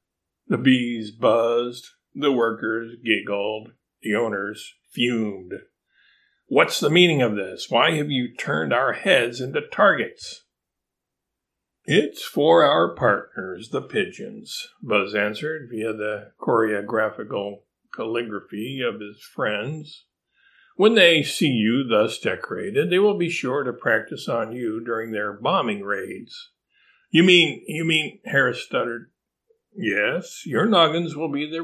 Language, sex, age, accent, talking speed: English, male, 50-69, American, 125 wpm